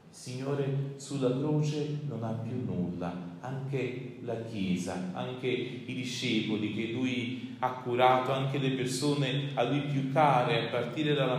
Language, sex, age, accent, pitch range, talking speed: Italian, male, 40-59, native, 110-130 Hz, 140 wpm